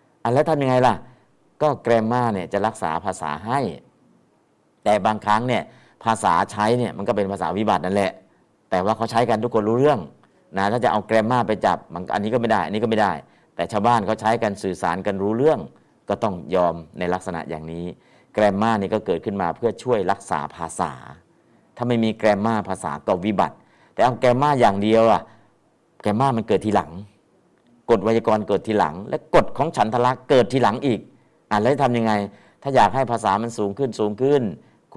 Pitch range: 95-115 Hz